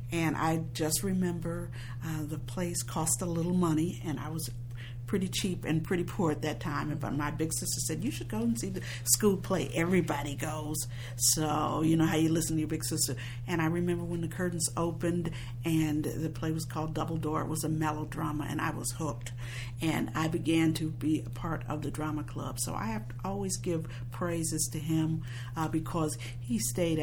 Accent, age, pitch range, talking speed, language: American, 50-69, 120-160 Hz, 205 wpm, English